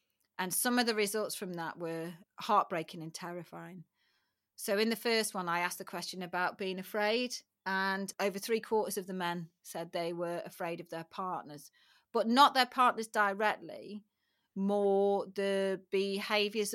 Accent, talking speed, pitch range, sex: British, 160 wpm, 180-210 Hz, female